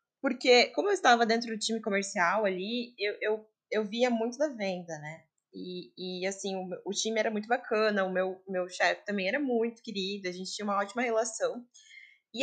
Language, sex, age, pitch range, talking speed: Portuguese, female, 20-39, 195-250 Hz, 195 wpm